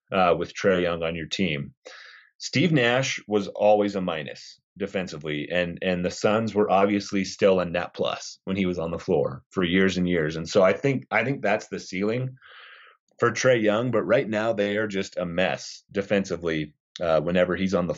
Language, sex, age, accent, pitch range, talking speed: English, male, 30-49, American, 90-105 Hz, 200 wpm